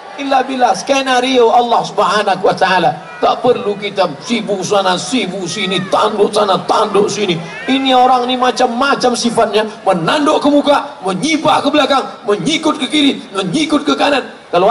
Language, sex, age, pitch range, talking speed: Indonesian, male, 50-69, 180-265 Hz, 145 wpm